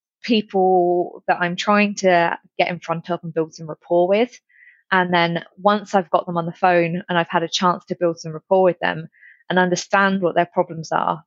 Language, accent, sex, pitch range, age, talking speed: English, British, female, 165-185 Hz, 20-39, 215 wpm